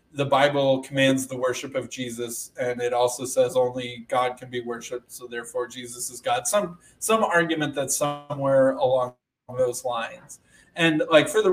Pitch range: 125-165 Hz